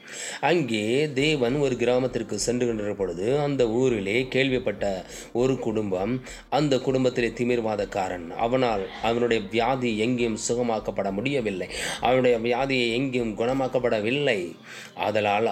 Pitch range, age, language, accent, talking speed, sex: 105-125 Hz, 20-39, English, Indian, 100 wpm, male